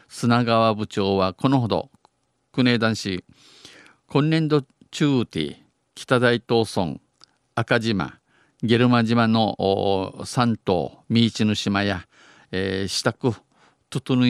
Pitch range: 100-125 Hz